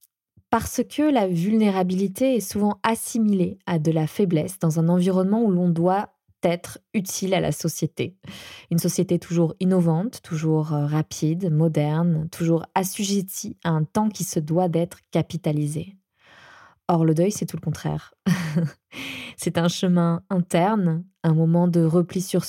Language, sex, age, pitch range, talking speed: French, female, 20-39, 165-195 Hz, 145 wpm